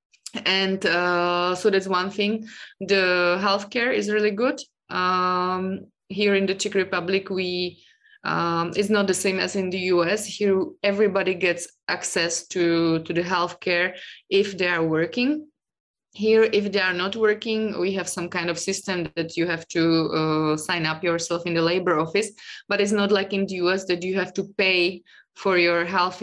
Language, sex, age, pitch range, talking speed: English, female, 20-39, 175-200 Hz, 185 wpm